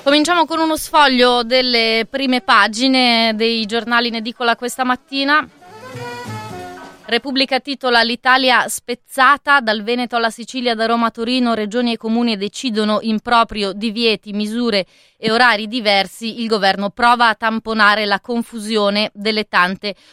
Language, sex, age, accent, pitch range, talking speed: Italian, female, 20-39, native, 195-235 Hz, 135 wpm